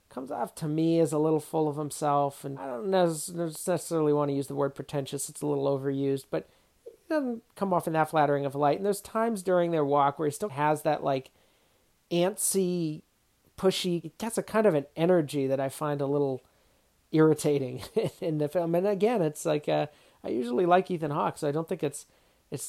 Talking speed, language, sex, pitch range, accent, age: 210 wpm, English, male, 140-180 Hz, American, 40-59